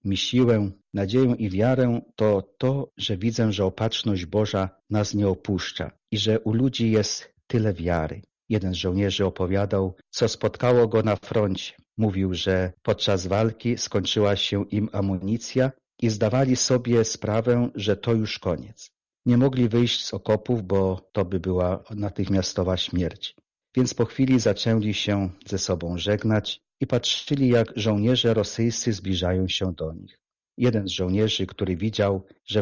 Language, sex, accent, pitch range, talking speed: Polish, male, native, 95-115 Hz, 150 wpm